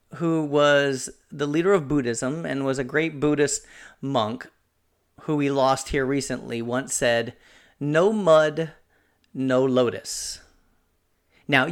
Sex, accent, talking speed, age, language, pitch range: male, American, 125 wpm, 40-59, English, 125-180 Hz